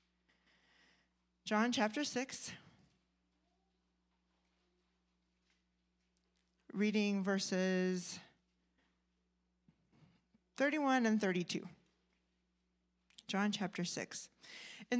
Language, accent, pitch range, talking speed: English, American, 170-220 Hz, 50 wpm